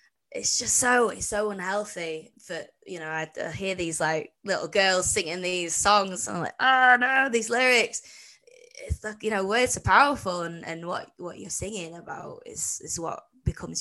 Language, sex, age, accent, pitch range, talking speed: English, female, 20-39, British, 160-195 Hz, 190 wpm